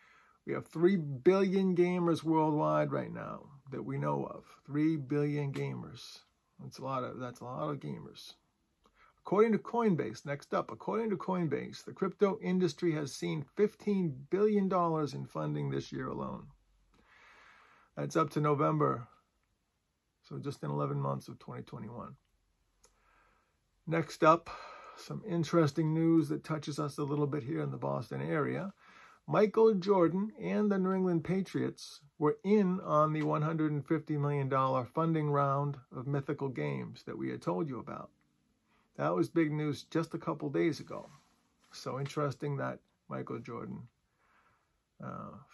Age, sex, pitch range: 50-69, male, 130-175 Hz